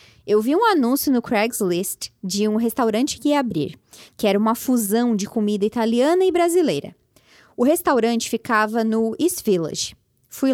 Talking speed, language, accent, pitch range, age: 160 wpm, Portuguese, Brazilian, 205-265 Hz, 20-39